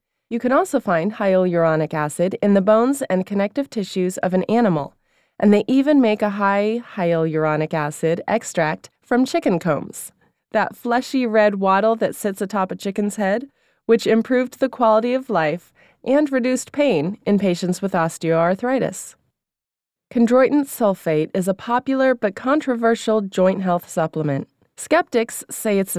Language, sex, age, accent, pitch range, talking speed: English, female, 20-39, American, 185-245 Hz, 145 wpm